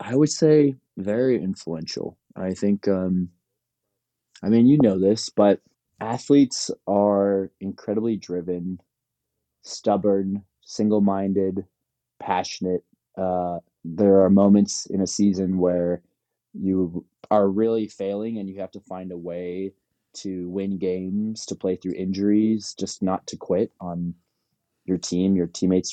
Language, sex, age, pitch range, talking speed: English, male, 20-39, 90-100 Hz, 130 wpm